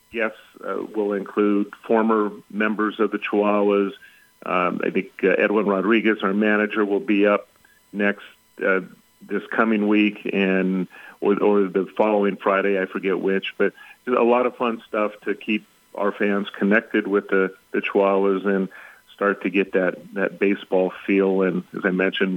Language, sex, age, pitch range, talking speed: English, male, 40-59, 95-105 Hz, 165 wpm